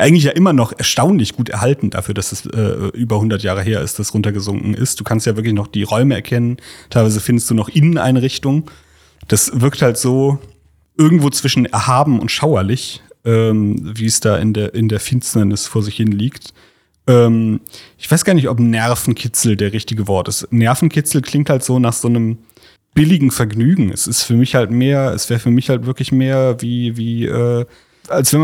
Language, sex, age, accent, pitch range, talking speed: German, male, 30-49, German, 110-130 Hz, 195 wpm